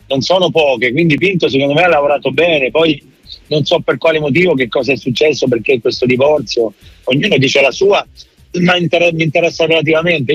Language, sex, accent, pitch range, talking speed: Italian, male, native, 150-190 Hz, 180 wpm